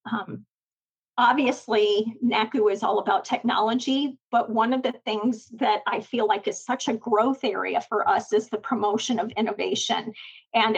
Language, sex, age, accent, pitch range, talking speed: English, female, 40-59, American, 220-260 Hz, 160 wpm